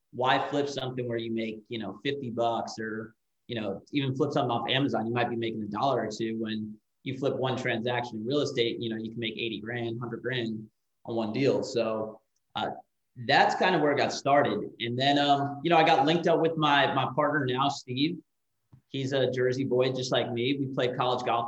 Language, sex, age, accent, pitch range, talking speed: English, male, 30-49, American, 115-140 Hz, 225 wpm